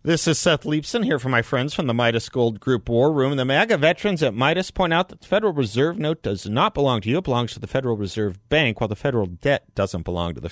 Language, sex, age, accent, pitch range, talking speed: English, male, 40-59, American, 95-135 Hz, 270 wpm